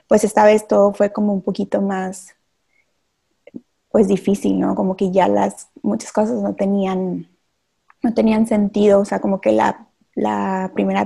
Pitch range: 185-210 Hz